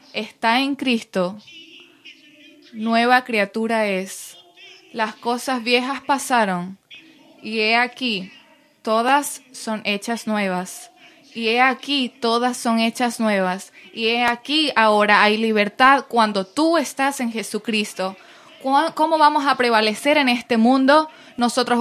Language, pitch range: Spanish, 205-265 Hz